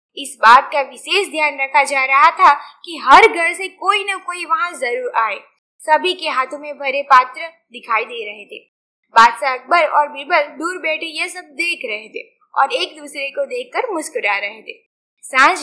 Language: Gujarati